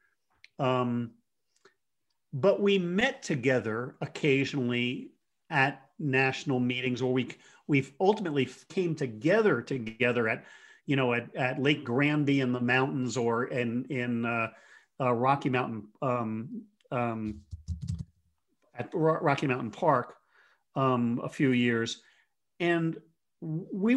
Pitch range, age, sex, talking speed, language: 120-160 Hz, 40-59, male, 115 wpm, English